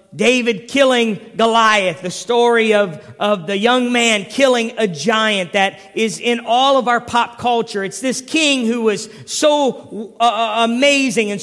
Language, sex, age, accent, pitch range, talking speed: English, male, 40-59, American, 220-265 Hz, 160 wpm